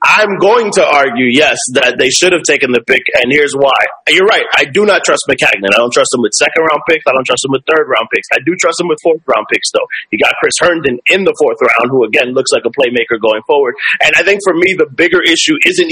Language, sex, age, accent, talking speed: English, male, 30-49, American, 260 wpm